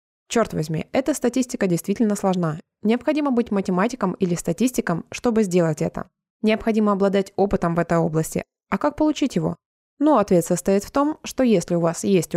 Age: 20-39